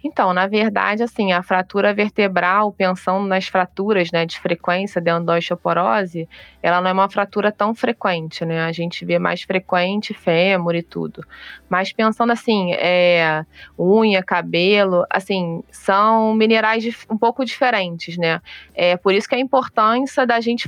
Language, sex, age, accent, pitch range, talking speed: Portuguese, female, 20-39, Brazilian, 185-220 Hz, 155 wpm